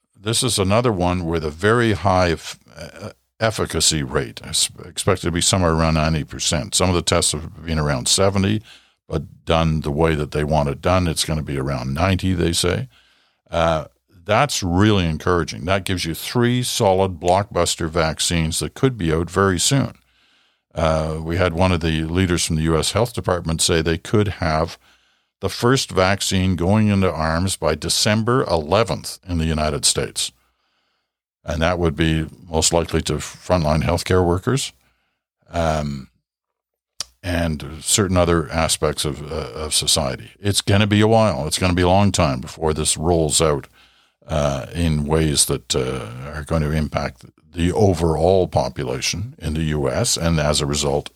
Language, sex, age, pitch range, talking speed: English, male, 60-79, 80-95 Hz, 170 wpm